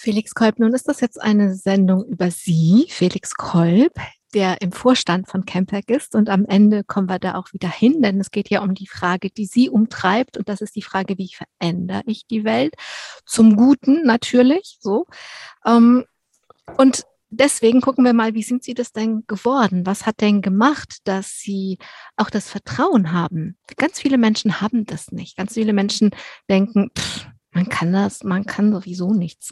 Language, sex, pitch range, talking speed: German, female, 190-240 Hz, 180 wpm